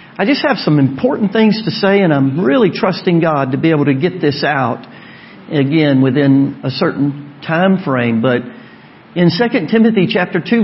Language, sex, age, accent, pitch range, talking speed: English, male, 50-69, American, 180-235 Hz, 180 wpm